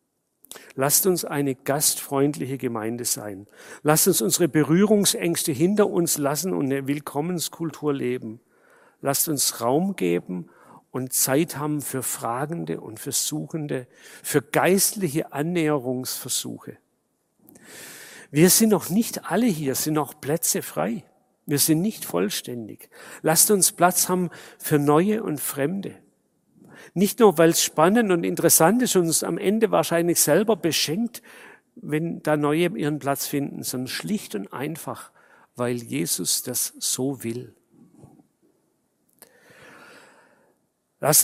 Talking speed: 125 wpm